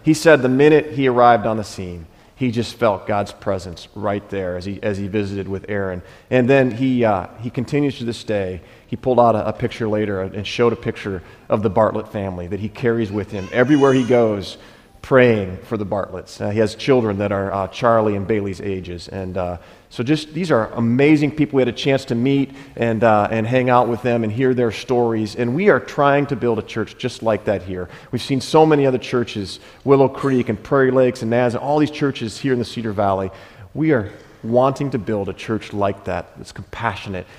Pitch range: 100-125 Hz